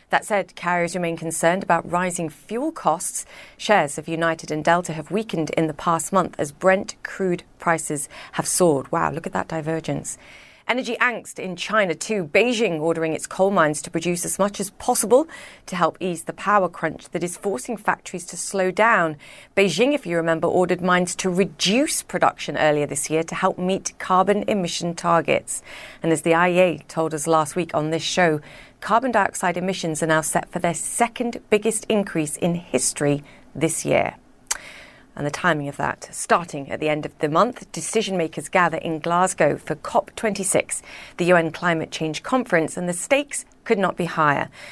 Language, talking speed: English, 180 wpm